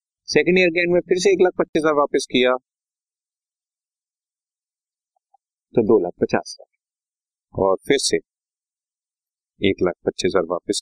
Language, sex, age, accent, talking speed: Hindi, male, 30-49, native, 140 wpm